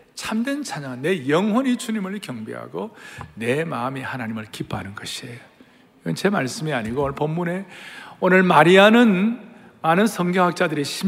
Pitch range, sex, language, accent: 140-215 Hz, male, Korean, native